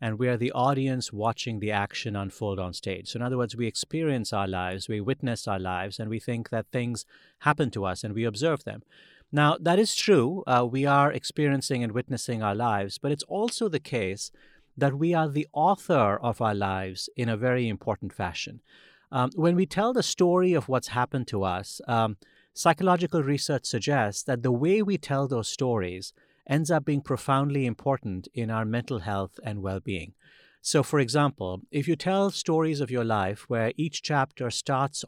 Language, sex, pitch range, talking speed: English, male, 110-150 Hz, 190 wpm